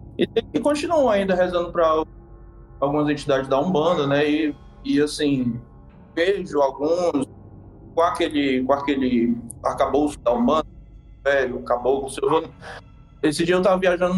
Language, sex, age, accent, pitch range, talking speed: Portuguese, male, 20-39, Brazilian, 130-180 Hz, 120 wpm